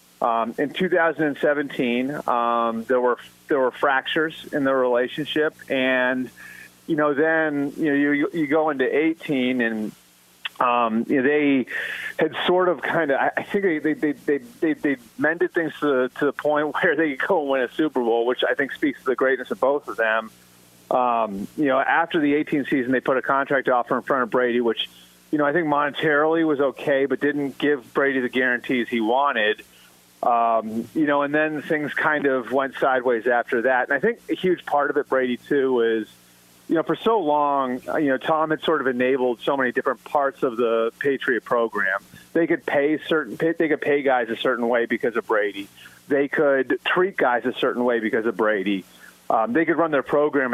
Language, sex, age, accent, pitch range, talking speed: English, male, 30-49, American, 120-155 Hz, 205 wpm